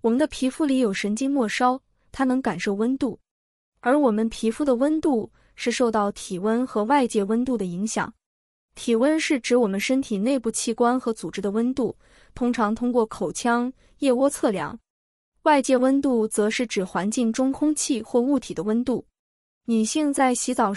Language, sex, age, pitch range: Chinese, female, 20-39, 210-265 Hz